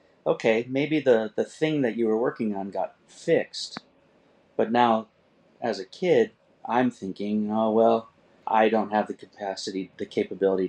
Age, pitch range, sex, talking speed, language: 30-49, 95-115 Hz, male, 155 wpm, English